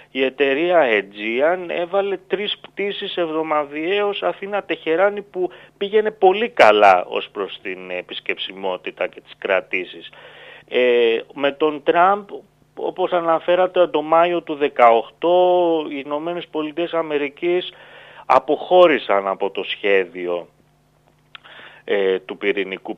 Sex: male